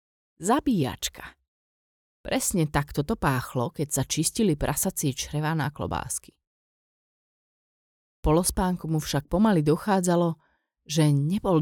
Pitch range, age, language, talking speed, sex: 135-165 Hz, 30-49, Slovak, 95 wpm, female